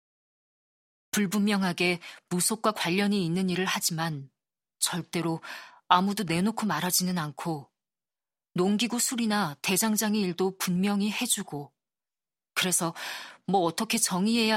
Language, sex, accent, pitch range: Korean, female, native, 170-210 Hz